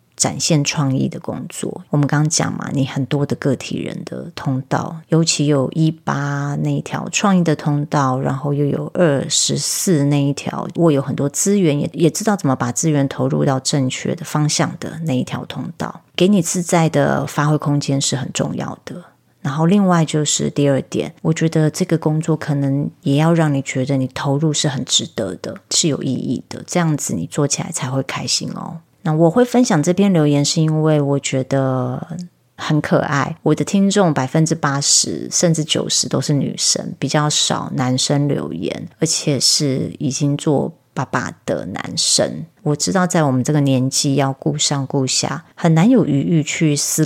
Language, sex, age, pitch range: Chinese, female, 30-49, 140-165 Hz